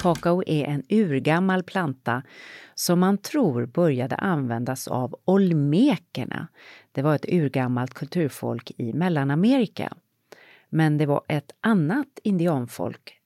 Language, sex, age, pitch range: English, female, 40-59, 130-185 Hz